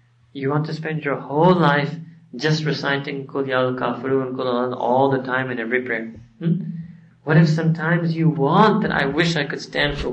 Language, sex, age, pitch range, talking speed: English, male, 40-59, 125-175 Hz, 190 wpm